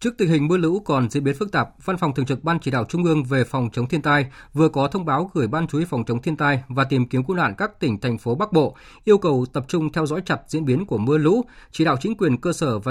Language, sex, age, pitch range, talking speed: Vietnamese, male, 20-39, 130-165 Hz, 305 wpm